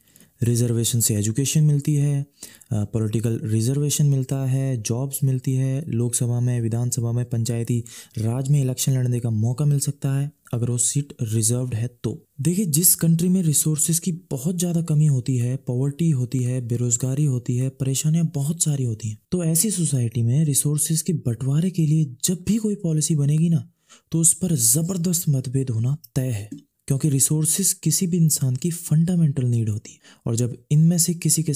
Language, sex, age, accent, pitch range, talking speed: Hindi, male, 20-39, native, 120-155 Hz, 175 wpm